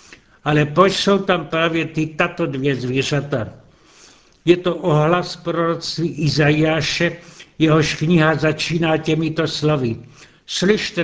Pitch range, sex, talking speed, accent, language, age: 145-175 Hz, male, 110 wpm, native, Czech, 70-89